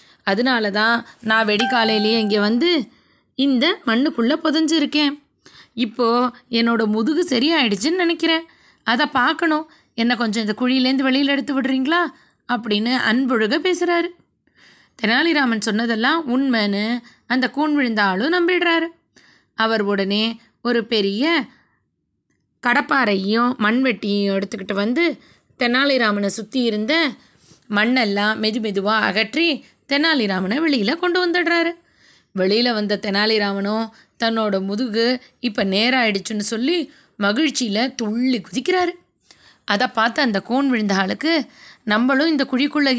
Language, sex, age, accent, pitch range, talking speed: Tamil, female, 20-39, native, 220-300 Hz, 100 wpm